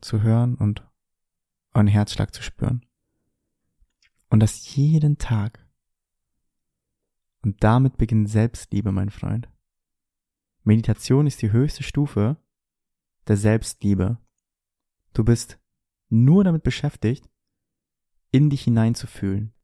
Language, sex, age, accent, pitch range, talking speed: German, male, 20-39, German, 105-120 Hz, 100 wpm